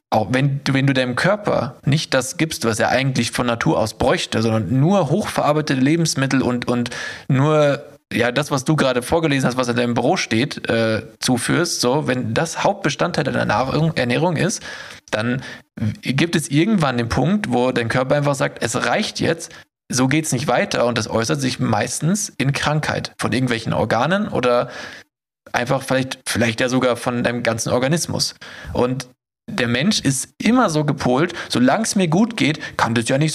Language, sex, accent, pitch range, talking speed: German, male, German, 120-155 Hz, 180 wpm